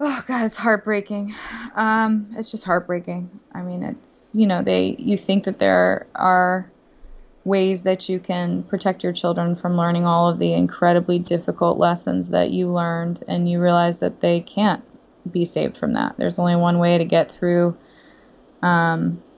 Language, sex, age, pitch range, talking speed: English, female, 20-39, 170-200 Hz, 170 wpm